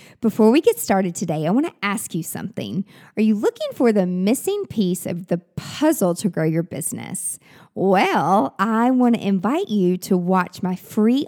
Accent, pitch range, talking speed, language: American, 180-230 Hz, 185 wpm, English